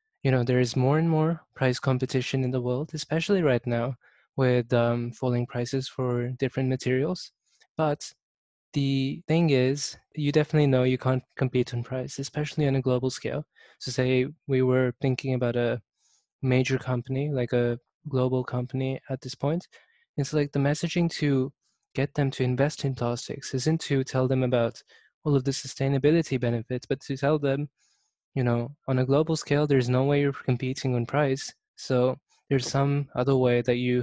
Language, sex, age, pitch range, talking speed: English, male, 20-39, 130-145 Hz, 175 wpm